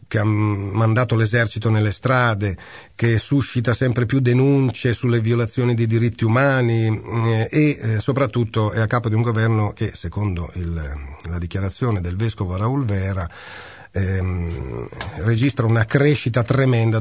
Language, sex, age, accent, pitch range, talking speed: Italian, male, 40-59, native, 95-125 Hz, 135 wpm